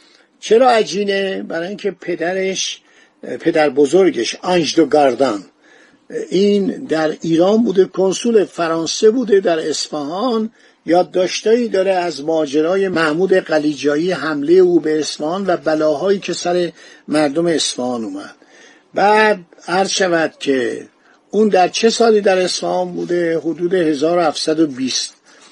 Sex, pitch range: male, 160-205 Hz